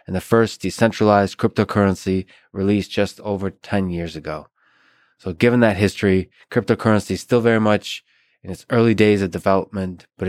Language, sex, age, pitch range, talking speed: English, male, 20-39, 95-110 Hz, 155 wpm